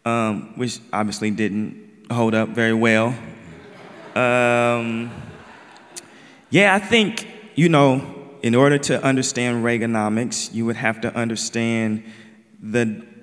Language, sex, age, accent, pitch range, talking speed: English, male, 30-49, American, 115-145 Hz, 115 wpm